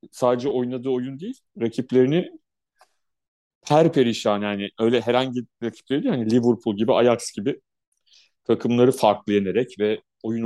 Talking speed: 125 wpm